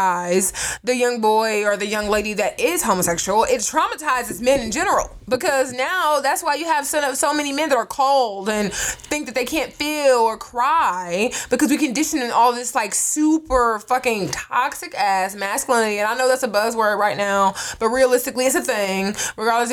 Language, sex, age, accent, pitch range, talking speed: English, female, 20-39, American, 225-300 Hz, 190 wpm